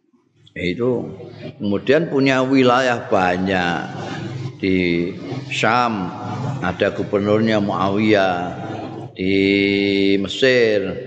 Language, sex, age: Indonesian, male, 50-69